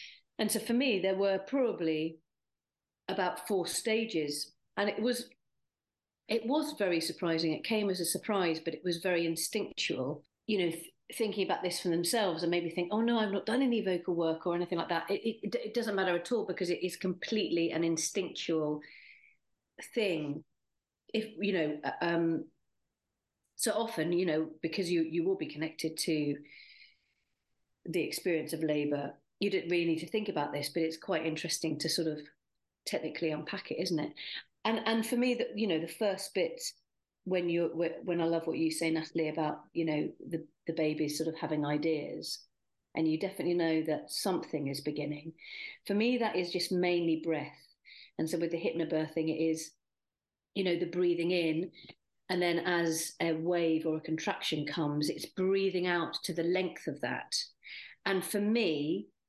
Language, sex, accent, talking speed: English, female, British, 180 wpm